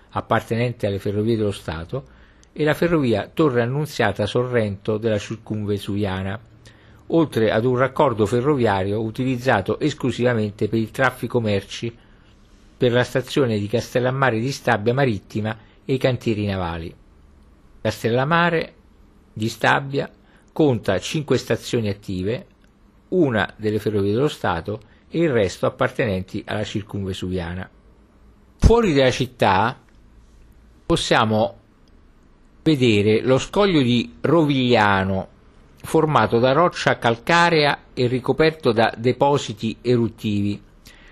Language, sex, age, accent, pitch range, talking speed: Italian, male, 50-69, native, 105-130 Hz, 105 wpm